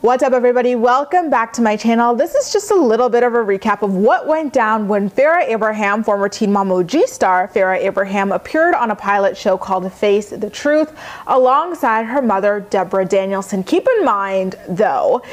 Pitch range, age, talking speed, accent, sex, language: 205-275 Hz, 30-49, 190 wpm, American, female, English